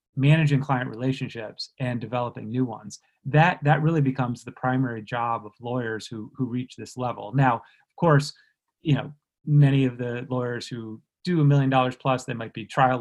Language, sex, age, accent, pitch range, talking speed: English, male, 30-49, American, 120-145 Hz, 185 wpm